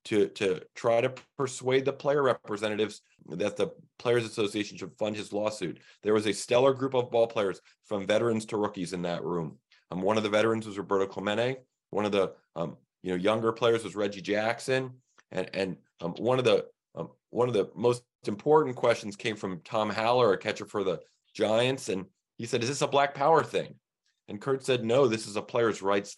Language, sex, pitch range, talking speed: English, male, 105-120 Hz, 205 wpm